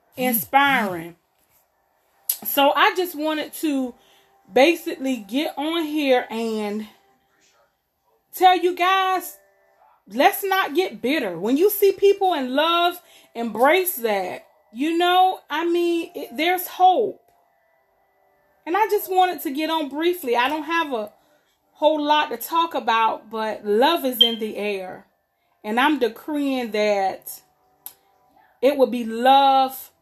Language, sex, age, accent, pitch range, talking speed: English, female, 30-49, American, 230-325 Hz, 130 wpm